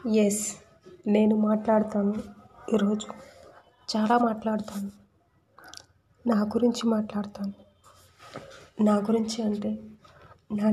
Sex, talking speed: female, 75 wpm